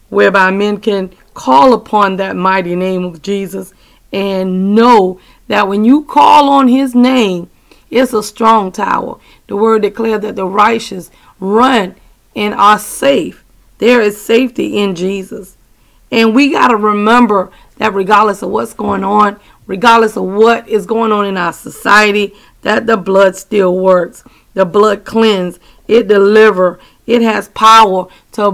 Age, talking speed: 40-59, 150 wpm